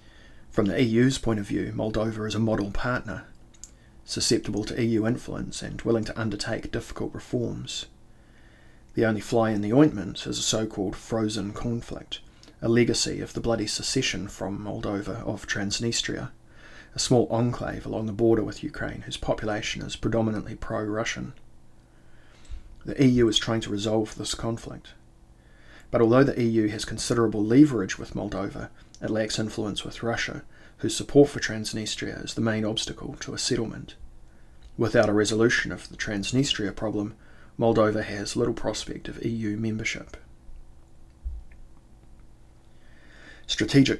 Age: 30-49